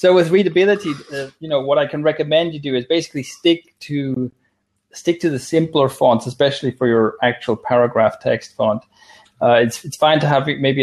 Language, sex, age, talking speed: English, male, 20-39, 195 wpm